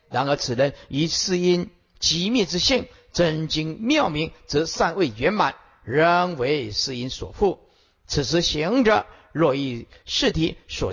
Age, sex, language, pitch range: 50-69, male, Chinese, 150-215 Hz